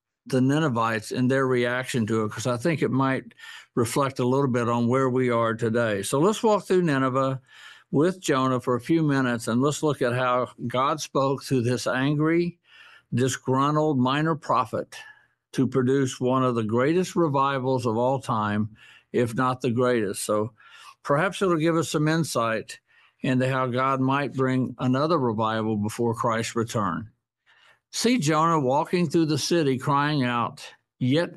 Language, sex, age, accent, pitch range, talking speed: English, male, 60-79, American, 120-150 Hz, 165 wpm